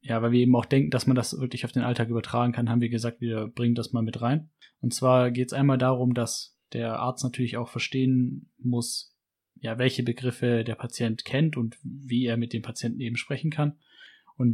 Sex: male